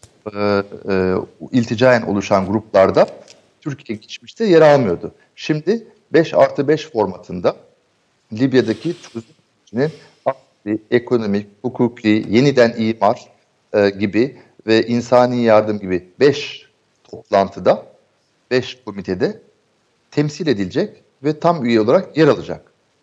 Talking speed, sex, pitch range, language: 100 wpm, male, 105-135 Hz, Turkish